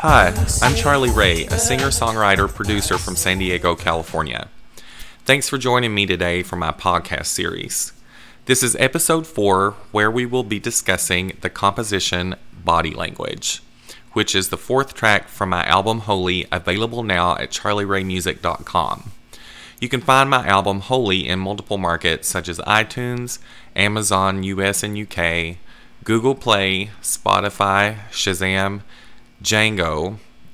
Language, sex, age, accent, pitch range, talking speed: English, male, 30-49, American, 90-110 Hz, 135 wpm